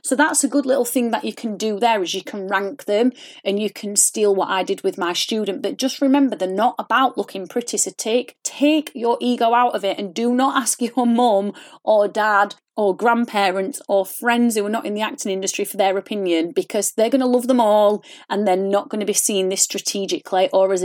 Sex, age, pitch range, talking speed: female, 30-49, 200-280 Hz, 235 wpm